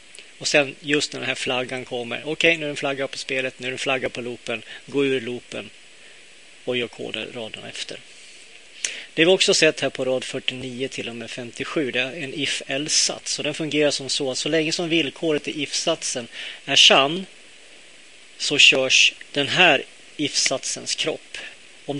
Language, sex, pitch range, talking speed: Swedish, male, 130-155 Hz, 185 wpm